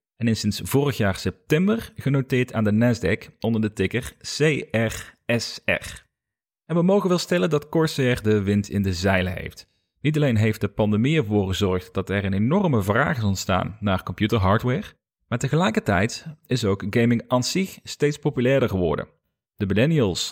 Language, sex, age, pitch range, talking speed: Dutch, male, 30-49, 100-140 Hz, 165 wpm